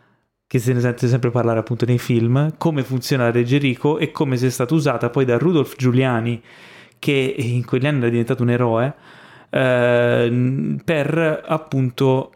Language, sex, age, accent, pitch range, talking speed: Italian, male, 20-39, native, 120-140 Hz, 160 wpm